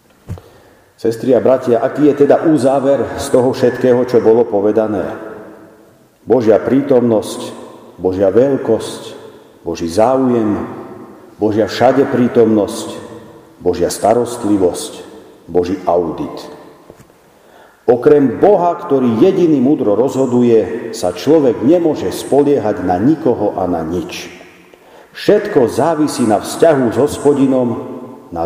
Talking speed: 100 wpm